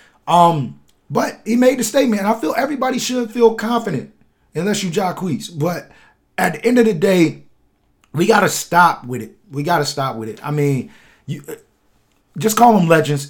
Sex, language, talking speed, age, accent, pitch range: male, English, 180 wpm, 30-49, American, 140-190 Hz